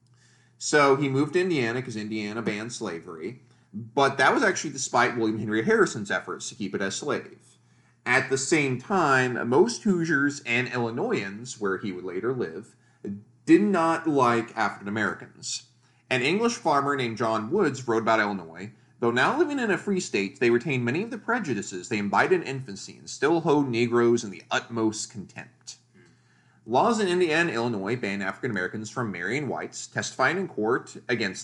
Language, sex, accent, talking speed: English, male, American, 170 wpm